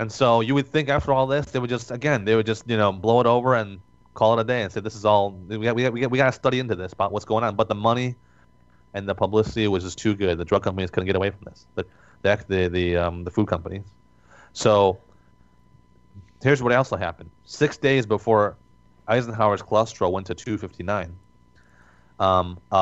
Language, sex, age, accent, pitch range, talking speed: English, male, 30-49, American, 90-115 Hz, 220 wpm